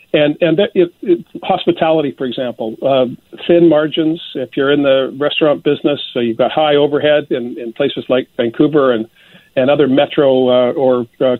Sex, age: male, 50-69